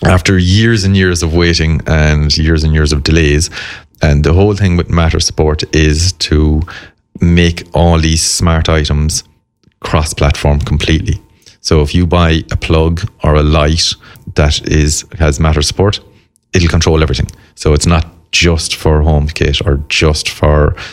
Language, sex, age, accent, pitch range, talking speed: English, male, 30-49, Irish, 75-85 Hz, 160 wpm